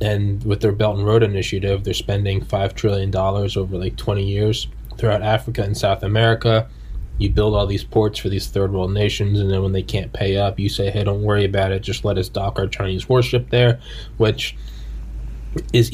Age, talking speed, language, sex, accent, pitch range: 20-39, 205 wpm, English, male, American, 95-115 Hz